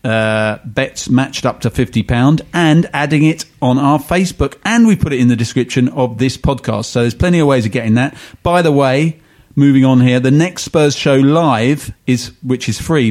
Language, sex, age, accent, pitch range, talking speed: English, male, 40-59, British, 120-155 Hz, 205 wpm